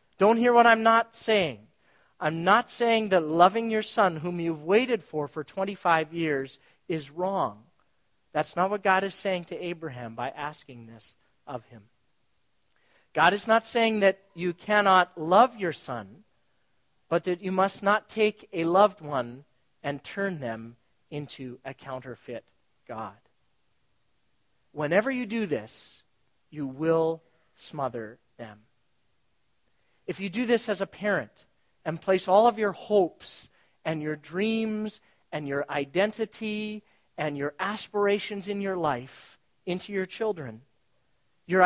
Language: English